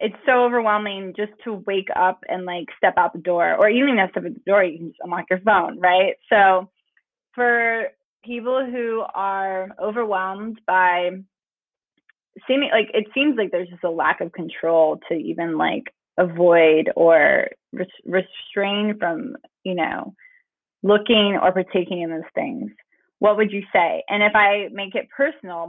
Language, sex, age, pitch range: English, female, 20-39, 180-215 Hz